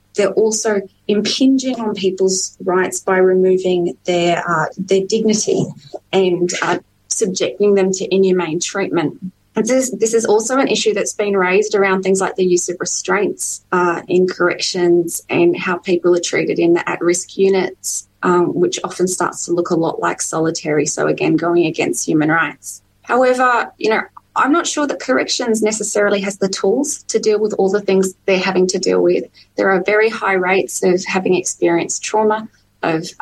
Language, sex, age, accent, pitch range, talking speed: English, female, 20-39, Australian, 175-205 Hz, 175 wpm